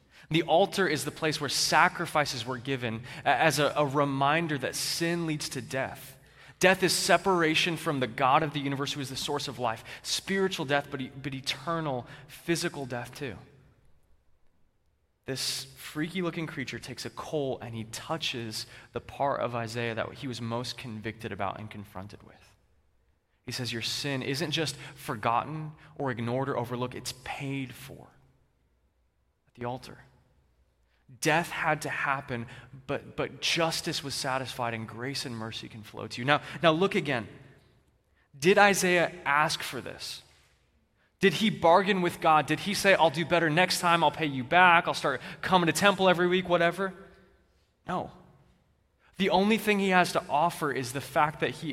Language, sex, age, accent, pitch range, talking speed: English, male, 20-39, American, 120-165 Hz, 170 wpm